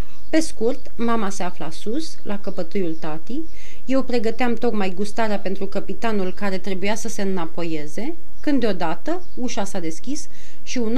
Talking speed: 150 wpm